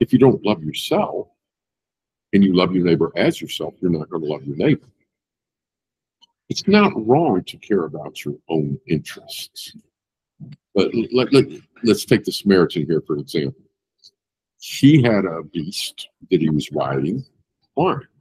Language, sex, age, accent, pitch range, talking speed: English, male, 50-69, American, 100-155 Hz, 160 wpm